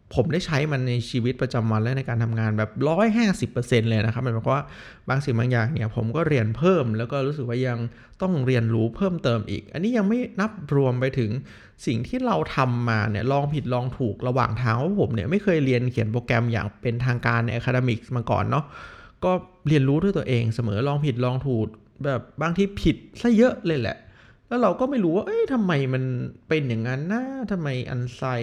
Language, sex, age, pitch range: Thai, male, 20-39, 120-155 Hz